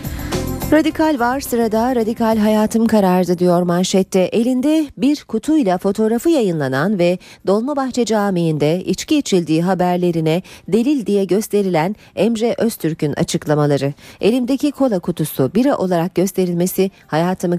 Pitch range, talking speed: 165-230 Hz, 110 wpm